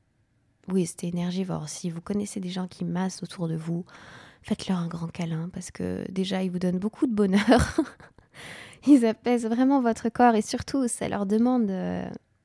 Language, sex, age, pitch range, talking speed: French, female, 20-39, 180-230 Hz, 175 wpm